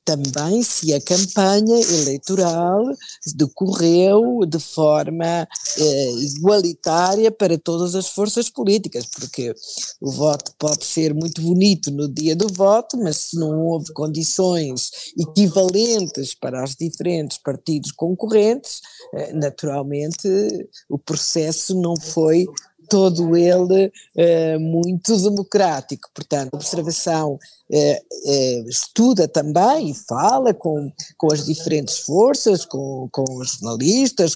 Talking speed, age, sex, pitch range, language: 115 wpm, 50-69, female, 150-195 Hz, Portuguese